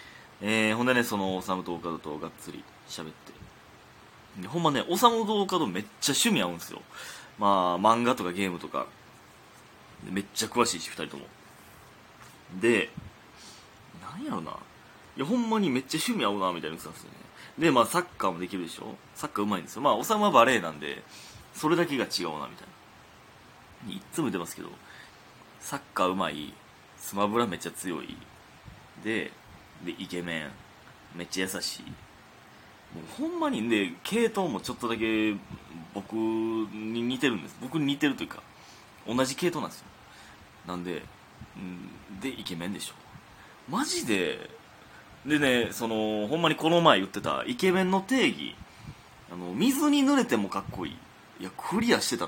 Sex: male